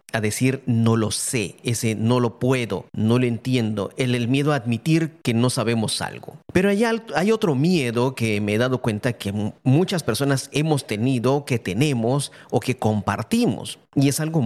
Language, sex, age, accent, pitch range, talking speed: Spanish, male, 40-59, Mexican, 120-160 Hz, 185 wpm